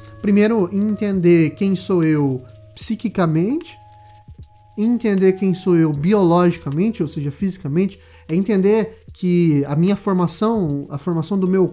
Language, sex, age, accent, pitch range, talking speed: Portuguese, male, 20-39, Brazilian, 150-205 Hz, 125 wpm